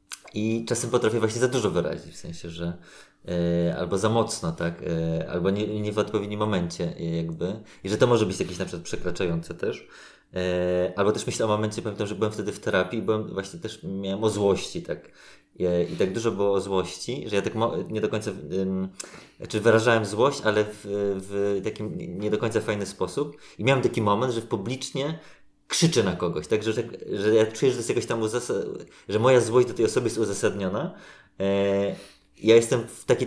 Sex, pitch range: male, 95-115 Hz